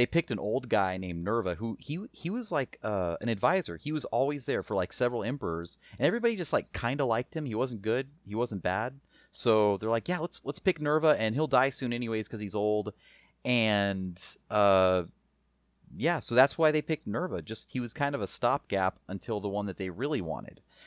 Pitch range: 105-140 Hz